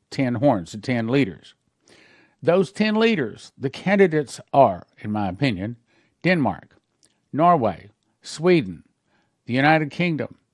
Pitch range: 110-155 Hz